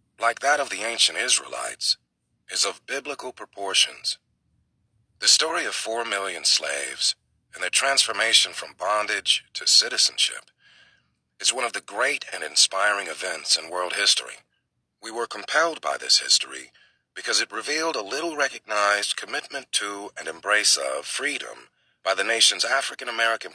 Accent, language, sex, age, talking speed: American, English, male, 40-59, 145 wpm